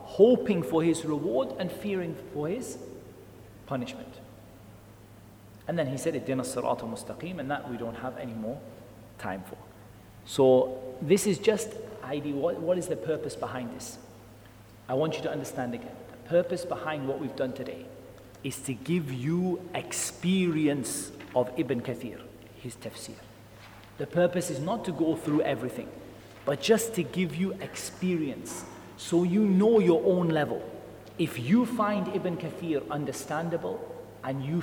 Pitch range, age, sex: 125-180 Hz, 40-59, male